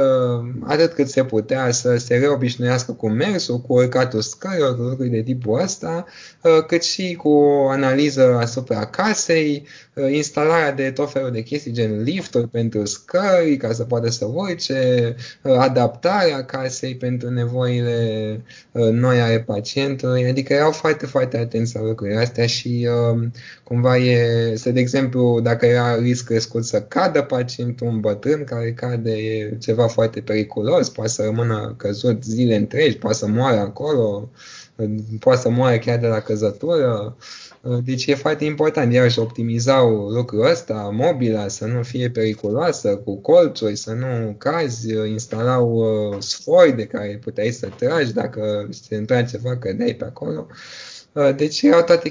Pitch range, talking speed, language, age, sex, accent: 115-135 Hz, 145 wpm, Romanian, 20-39, male, native